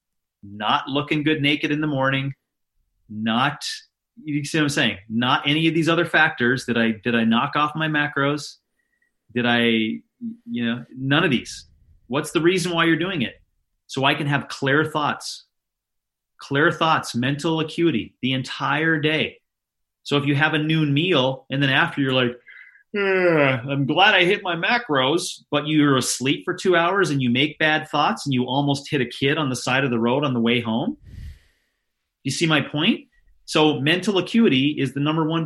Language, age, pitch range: English, 30-49, 120-155 Hz